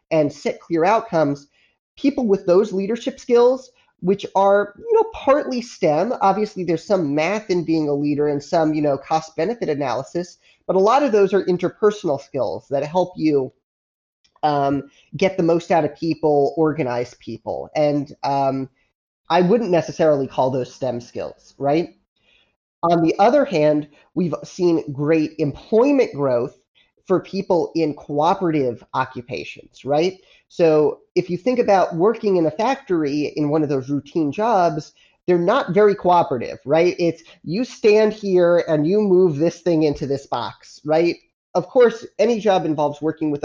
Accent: American